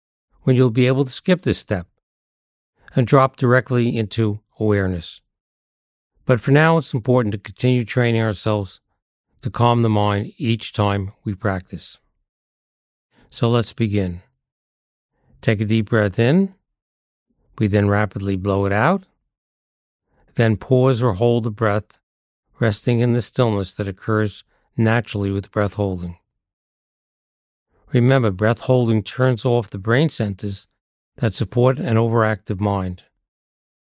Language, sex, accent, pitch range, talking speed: English, male, American, 100-125 Hz, 130 wpm